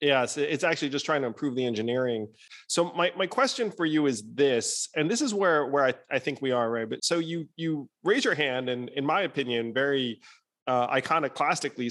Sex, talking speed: male, 220 wpm